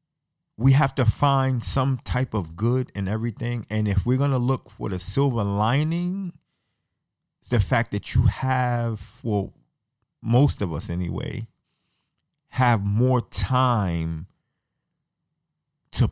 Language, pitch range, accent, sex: English, 100-130 Hz, American, male